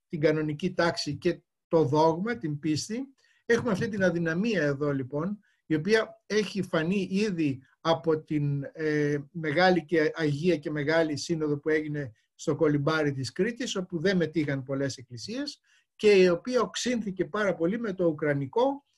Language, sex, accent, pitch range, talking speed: Greek, male, native, 150-195 Hz, 150 wpm